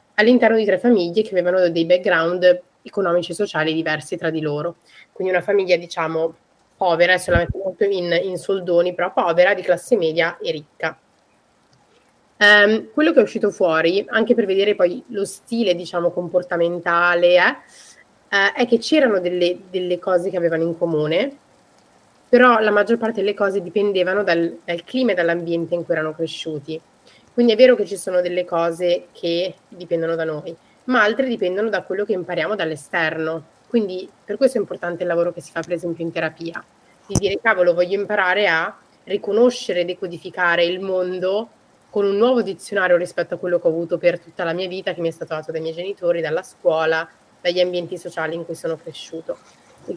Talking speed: 180 wpm